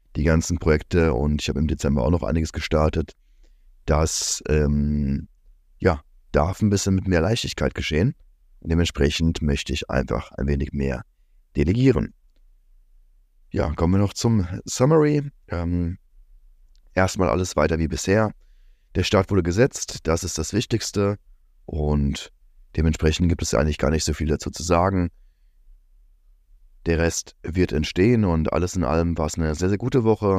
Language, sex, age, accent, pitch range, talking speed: German, male, 30-49, German, 75-90 Hz, 150 wpm